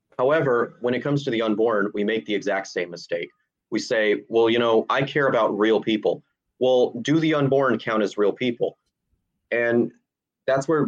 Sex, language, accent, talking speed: male, English, American, 190 wpm